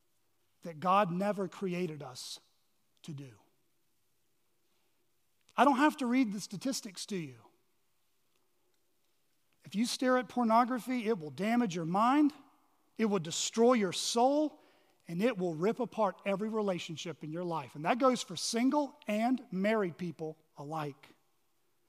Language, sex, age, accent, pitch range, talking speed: English, male, 40-59, American, 185-275 Hz, 135 wpm